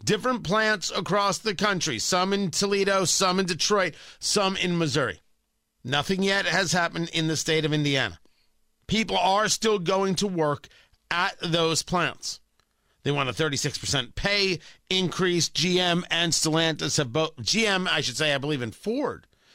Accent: American